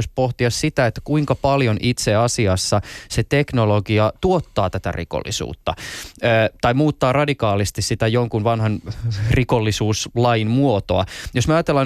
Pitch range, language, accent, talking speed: 105-130 Hz, Finnish, native, 115 wpm